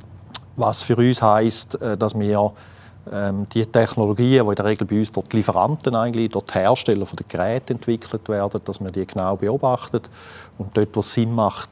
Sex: male